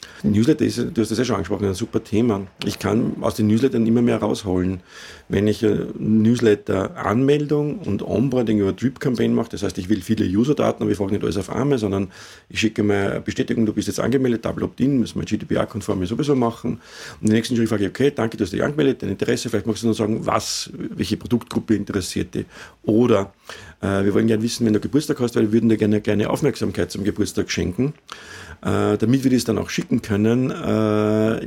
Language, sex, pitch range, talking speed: German, male, 105-120 Hz, 210 wpm